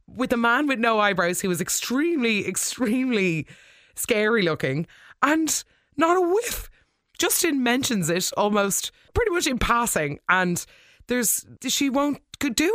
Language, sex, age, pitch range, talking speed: English, female, 20-39, 155-235 Hz, 140 wpm